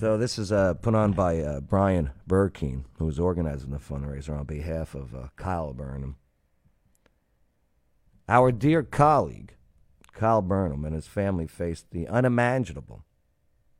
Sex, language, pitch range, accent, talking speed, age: male, English, 80-115 Hz, American, 140 wpm, 50-69